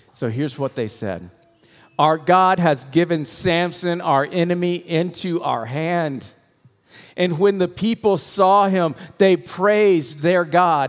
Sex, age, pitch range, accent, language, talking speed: male, 50-69, 130-185 Hz, American, English, 140 wpm